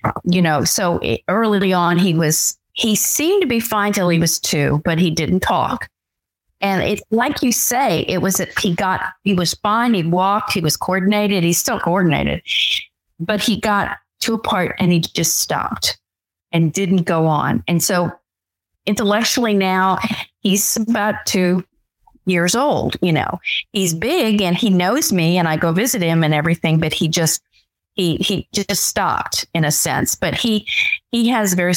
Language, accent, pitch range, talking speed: English, American, 160-210 Hz, 180 wpm